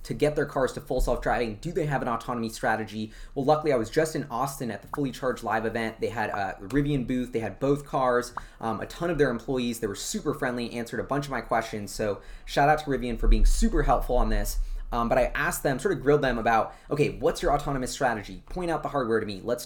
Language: English